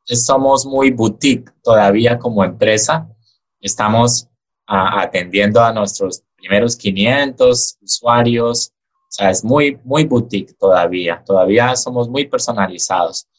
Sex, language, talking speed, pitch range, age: male, English, 110 wpm, 105-135 Hz, 20-39